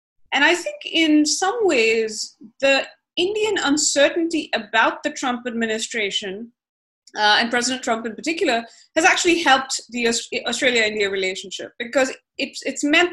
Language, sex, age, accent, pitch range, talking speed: English, female, 20-39, Indian, 220-285 Hz, 135 wpm